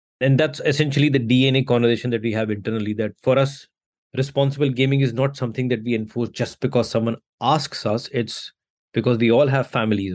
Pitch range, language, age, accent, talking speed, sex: 110-135 Hz, English, 20-39, Indian, 190 wpm, male